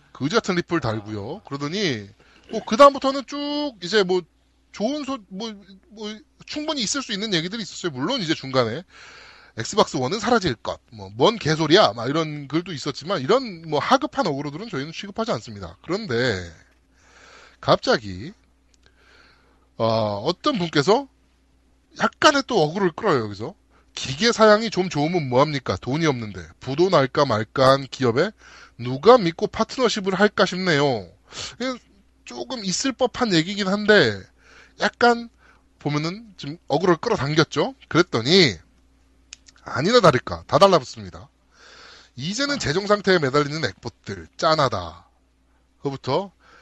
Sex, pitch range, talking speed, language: male, 125-210 Hz, 110 wpm, English